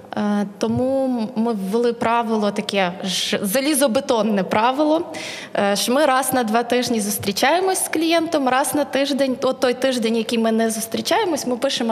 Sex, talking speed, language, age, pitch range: female, 140 wpm, Ukrainian, 20-39, 225-280 Hz